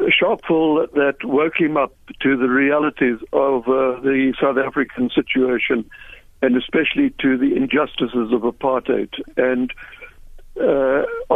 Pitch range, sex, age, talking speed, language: 130-170 Hz, male, 60-79, 120 wpm, English